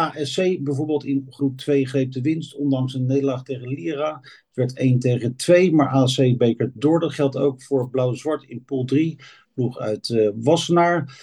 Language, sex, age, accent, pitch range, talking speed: Dutch, male, 50-69, Dutch, 120-150 Hz, 180 wpm